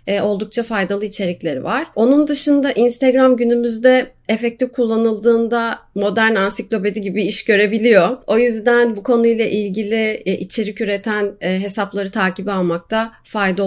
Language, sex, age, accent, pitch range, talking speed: Turkish, female, 30-49, native, 195-235 Hz, 115 wpm